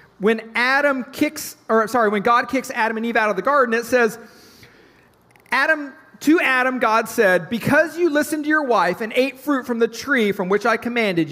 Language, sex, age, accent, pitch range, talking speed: English, male, 40-59, American, 210-270 Hz, 200 wpm